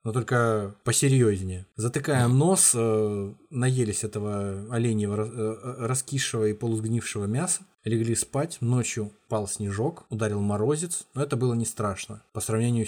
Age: 20-39